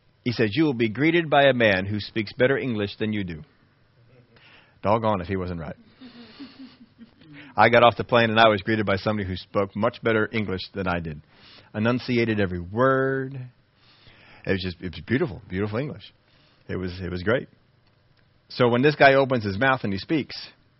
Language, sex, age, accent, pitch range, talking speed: English, male, 40-59, American, 105-145 Hz, 180 wpm